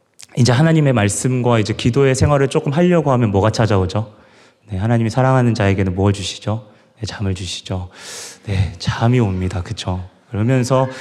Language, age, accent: Korean, 30-49, native